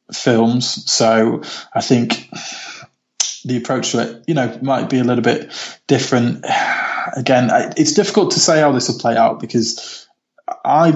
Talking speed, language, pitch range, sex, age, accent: 155 wpm, English, 115-140 Hz, male, 20-39, British